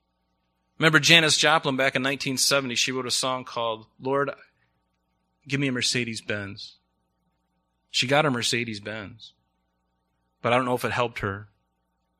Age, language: 30-49, English